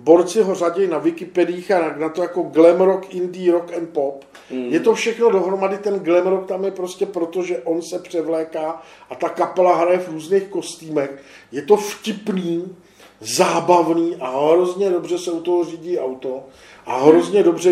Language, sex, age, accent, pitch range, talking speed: Czech, male, 50-69, native, 160-185 Hz, 175 wpm